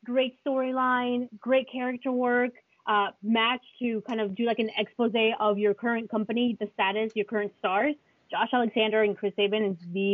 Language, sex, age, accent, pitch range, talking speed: English, female, 30-49, American, 200-235 Hz, 180 wpm